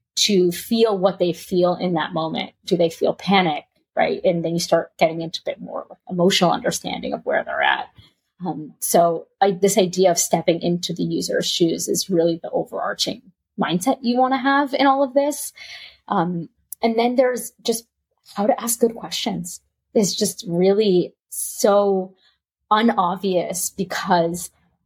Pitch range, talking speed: 175-215 Hz, 160 wpm